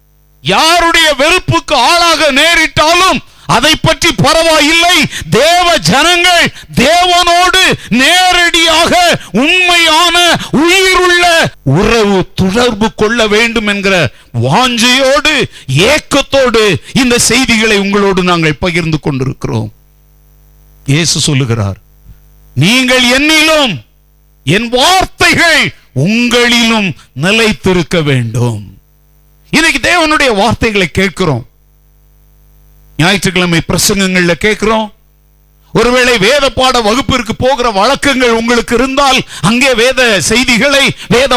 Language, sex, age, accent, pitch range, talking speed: Tamil, male, 50-69, native, 190-315 Hz, 75 wpm